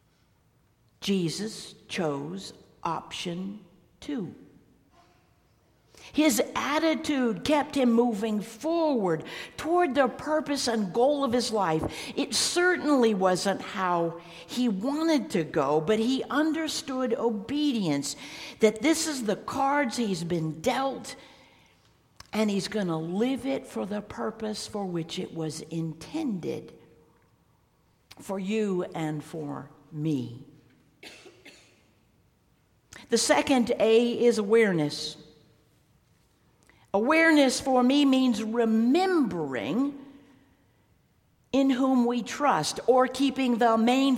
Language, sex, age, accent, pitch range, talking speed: English, female, 60-79, American, 180-270 Hz, 100 wpm